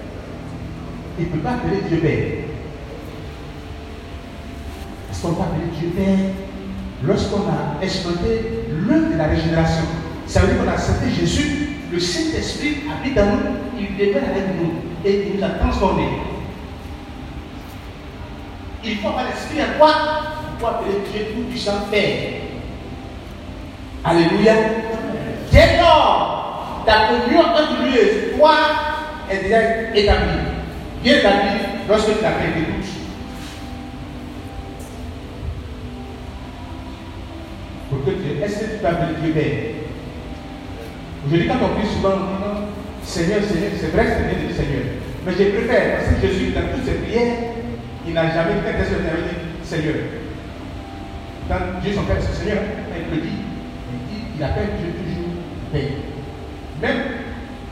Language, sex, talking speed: French, male, 145 wpm